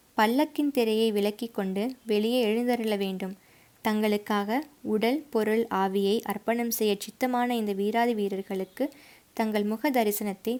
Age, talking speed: 20-39, 115 wpm